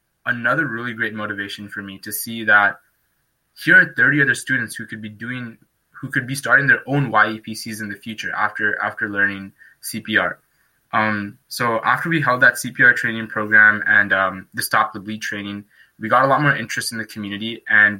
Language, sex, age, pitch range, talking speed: English, male, 20-39, 105-120 Hz, 195 wpm